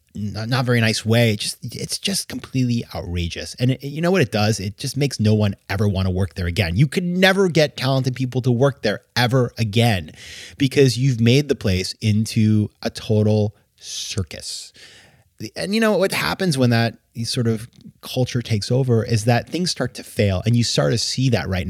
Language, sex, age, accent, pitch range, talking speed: English, male, 30-49, American, 105-140 Hz, 190 wpm